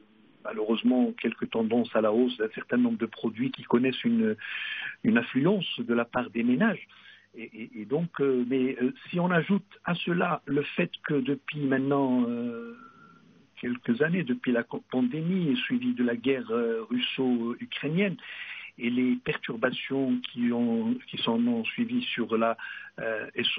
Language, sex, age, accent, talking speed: English, male, 60-79, French, 160 wpm